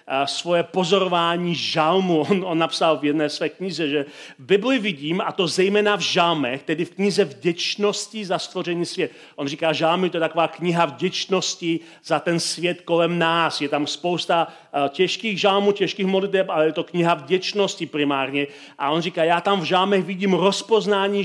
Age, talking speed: 40-59, 170 wpm